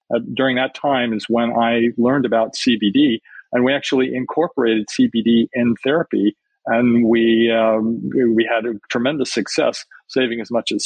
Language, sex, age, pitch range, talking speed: English, male, 40-59, 110-130 Hz, 160 wpm